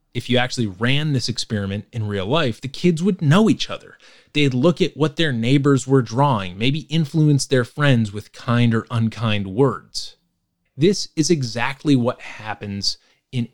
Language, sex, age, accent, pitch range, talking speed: English, male, 30-49, American, 110-150 Hz, 170 wpm